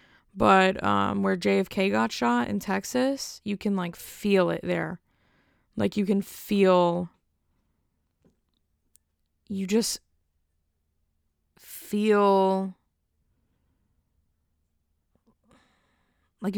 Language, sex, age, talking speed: English, female, 20-39, 80 wpm